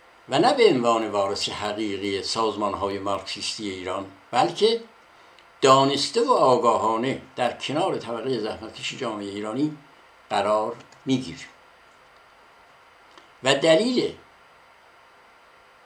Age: 60-79